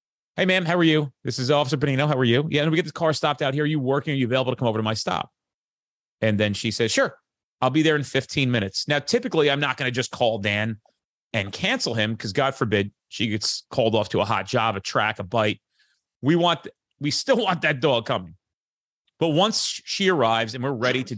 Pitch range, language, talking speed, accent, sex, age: 115-160 Hz, English, 245 wpm, American, male, 30-49